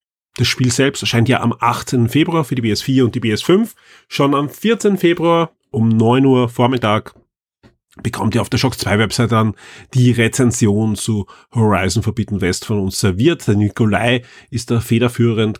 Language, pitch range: German, 110-140 Hz